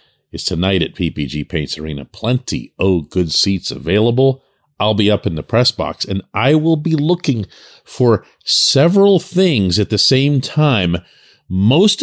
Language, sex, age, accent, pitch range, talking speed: English, male, 40-59, American, 90-145 Hz, 155 wpm